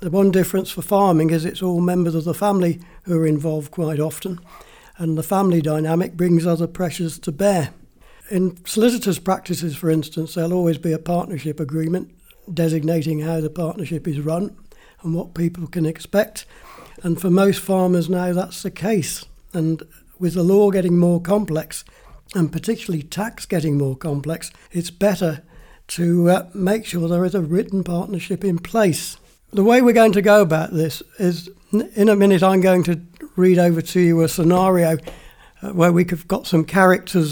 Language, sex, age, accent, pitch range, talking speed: English, male, 60-79, British, 160-185 Hz, 175 wpm